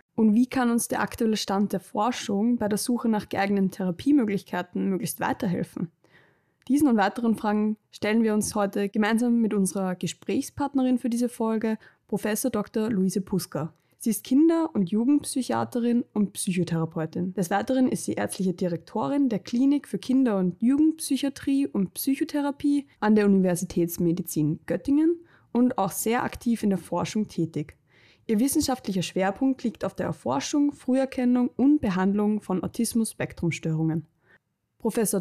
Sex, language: female, German